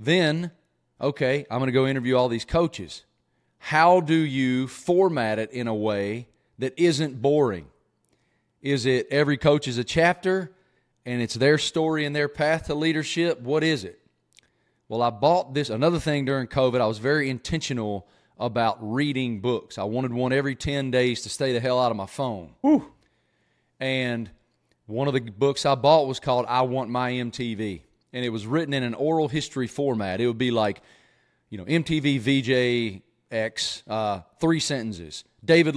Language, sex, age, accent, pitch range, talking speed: English, male, 30-49, American, 115-145 Hz, 175 wpm